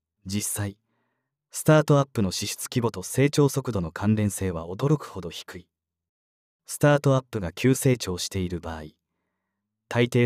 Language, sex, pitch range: Japanese, male, 90-125 Hz